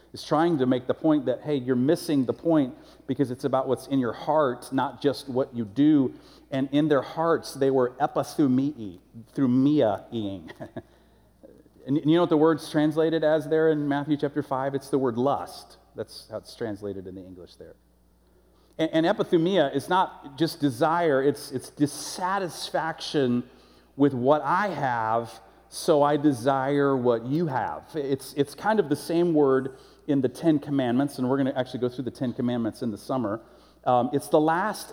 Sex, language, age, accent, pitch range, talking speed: male, English, 40-59, American, 125-155 Hz, 180 wpm